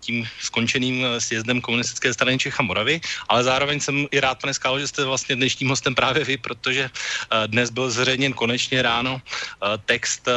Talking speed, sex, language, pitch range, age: 160 wpm, male, Slovak, 120-145 Hz, 30-49